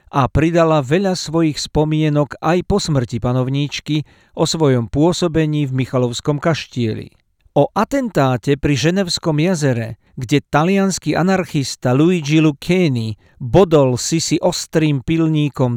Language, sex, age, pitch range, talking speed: Slovak, male, 50-69, 135-170 Hz, 110 wpm